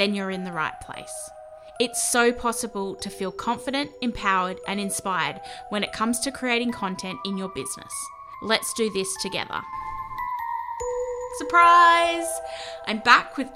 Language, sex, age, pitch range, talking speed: English, female, 10-29, 190-240 Hz, 140 wpm